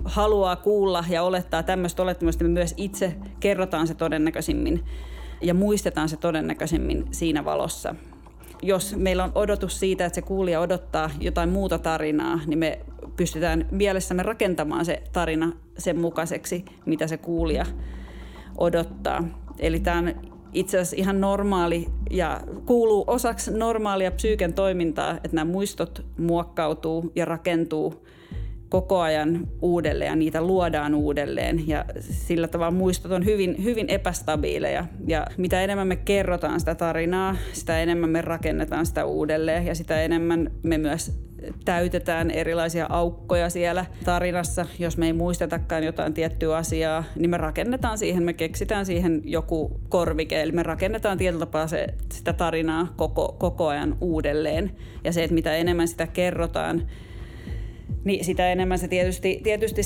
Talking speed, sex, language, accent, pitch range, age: 140 wpm, female, Finnish, native, 160-185 Hz, 30-49